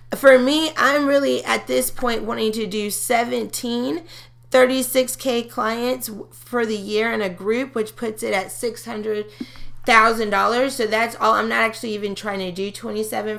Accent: American